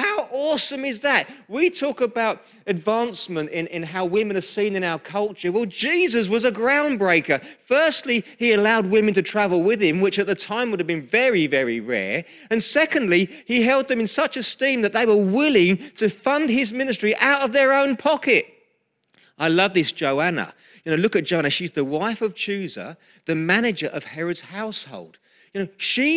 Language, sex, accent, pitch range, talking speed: English, male, British, 175-235 Hz, 190 wpm